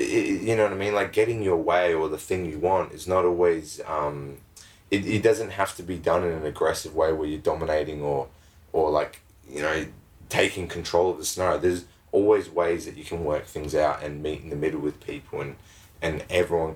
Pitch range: 75-85 Hz